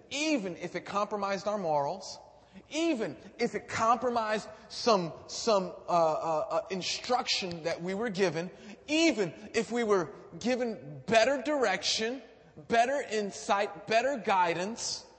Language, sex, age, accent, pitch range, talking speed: English, male, 30-49, American, 140-200 Hz, 120 wpm